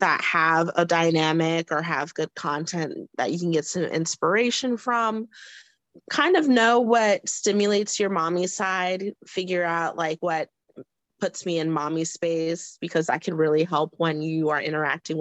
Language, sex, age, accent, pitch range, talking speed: English, female, 30-49, American, 155-205 Hz, 160 wpm